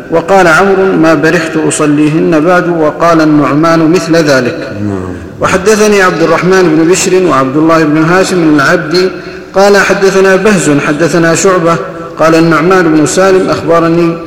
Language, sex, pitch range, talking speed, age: Arabic, male, 155-185 Hz, 130 wpm, 50-69